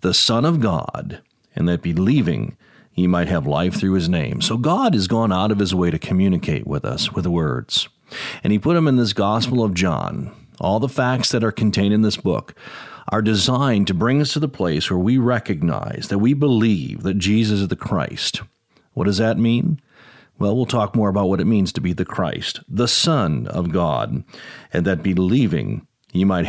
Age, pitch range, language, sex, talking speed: 50-69, 100-135 Hz, English, male, 205 wpm